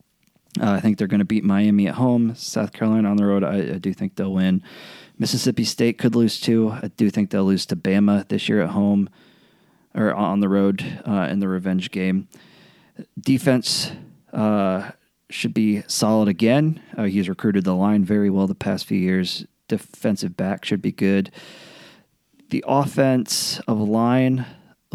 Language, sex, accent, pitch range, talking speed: English, male, American, 95-110 Hz, 175 wpm